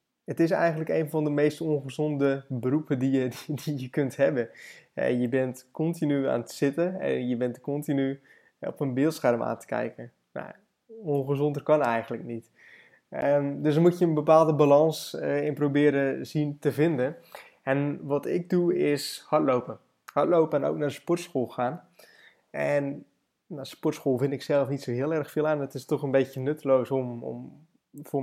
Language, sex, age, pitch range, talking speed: Dutch, male, 20-39, 135-155 Hz, 170 wpm